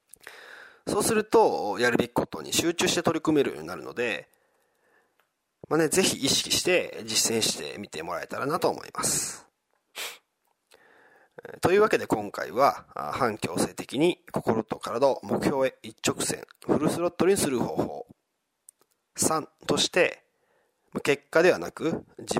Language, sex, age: Japanese, male, 40-59